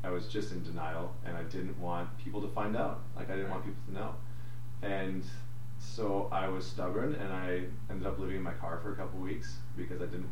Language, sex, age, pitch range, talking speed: English, male, 30-49, 85-120 Hz, 235 wpm